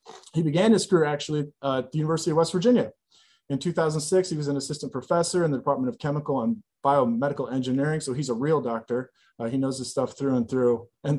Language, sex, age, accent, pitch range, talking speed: English, male, 30-49, American, 125-150 Hz, 215 wpm